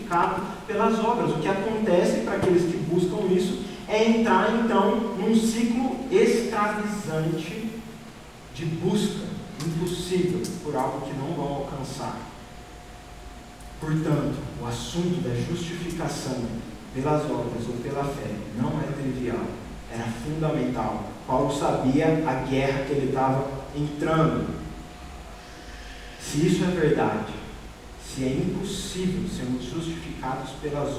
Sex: male